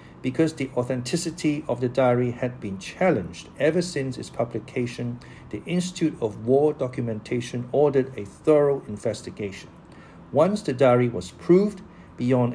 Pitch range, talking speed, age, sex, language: 115-145 Hz, 135 wpm, 50-69, male, English